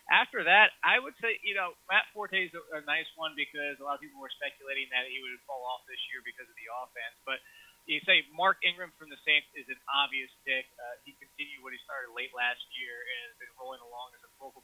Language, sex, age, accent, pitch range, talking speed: English, male, 20-39, American, 135-175 Hz, 250 wpm